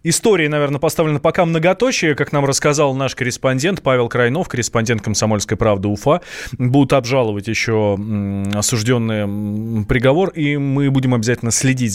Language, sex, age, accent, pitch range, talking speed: Russian, male, 20-39, native, 115-150 Hz, 130 wpm